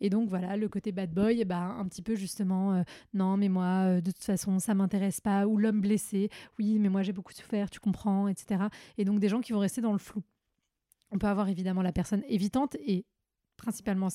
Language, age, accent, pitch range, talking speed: French, 20-39, French, 195-230 Hz, 230 wpm